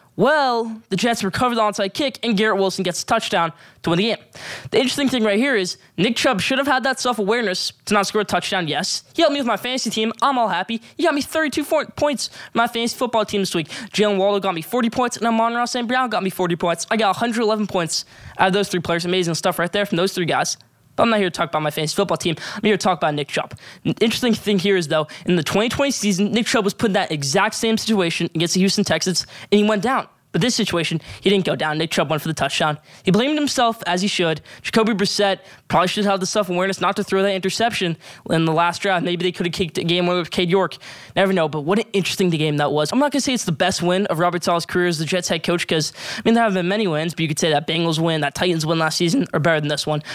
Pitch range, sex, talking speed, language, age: 170-220 Hz, male, 280 wpm, English, 10-29